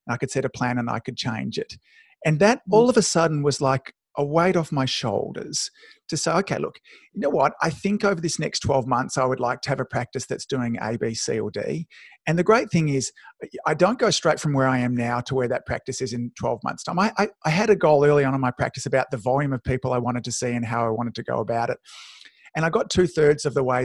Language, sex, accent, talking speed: English, male, Australian, 275 wpm